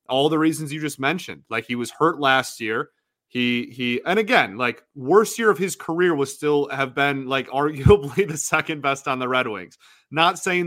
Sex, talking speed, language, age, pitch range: male, 210 wpm, English, 20-39, 125-150 Hz